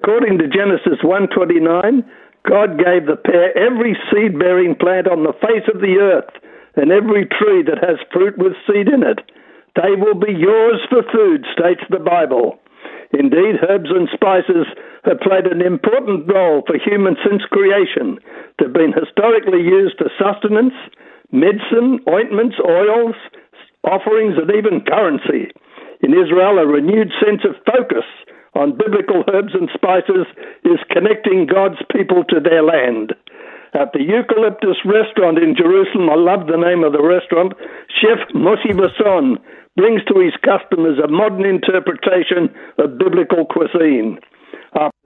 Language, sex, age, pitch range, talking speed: English, male, 60-79, 180-260 Hz, 145 wpm